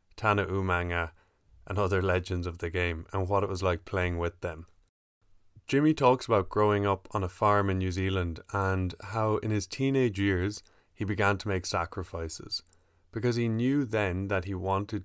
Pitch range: 90-110 Hz